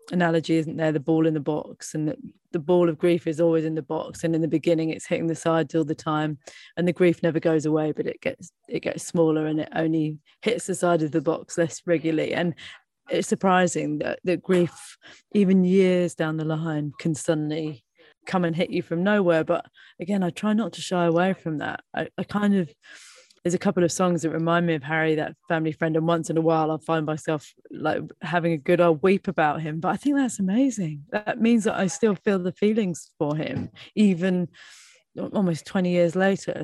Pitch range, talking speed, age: 160-180 Hz, 220 wpm, 20-39